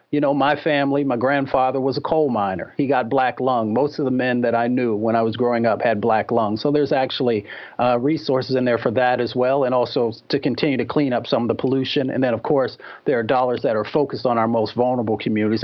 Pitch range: 115-135 Hz